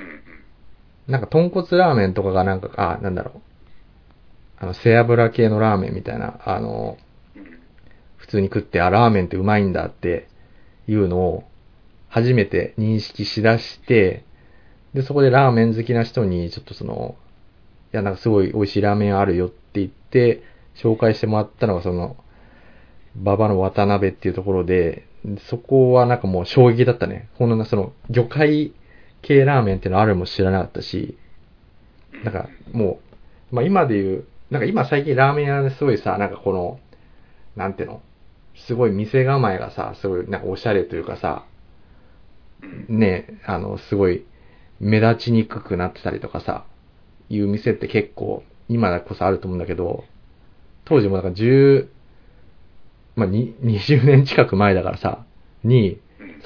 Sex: male